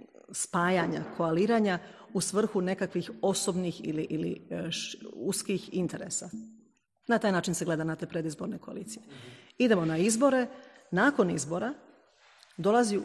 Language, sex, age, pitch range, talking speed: Croatian, female, 40-59, 175-220 Hz, 115 wpm